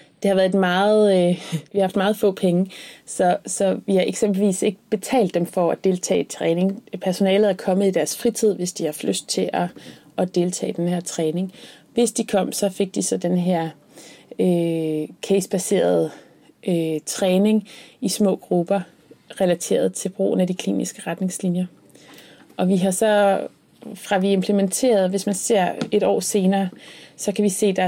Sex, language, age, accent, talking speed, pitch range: female, Danish, 30-49, native, 185 wpm, 170-200 Hz